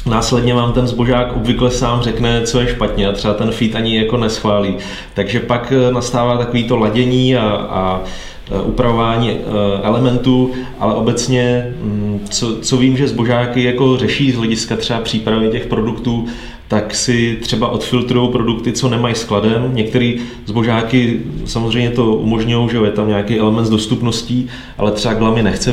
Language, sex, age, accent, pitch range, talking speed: Czech, male, 30-49, native, 105-120 Hz, 145 wpm